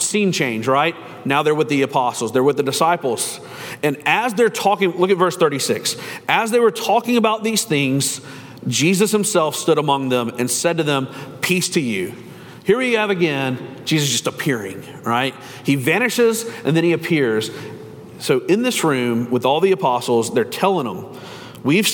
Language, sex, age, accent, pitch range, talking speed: English, male, 40-59, American, 135-185 Hz, 180 wpm